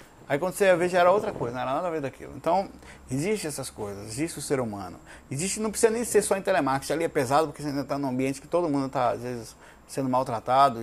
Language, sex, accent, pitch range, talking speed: Portuguese, male, Brazilian, 125-165 Hz, 270 wpm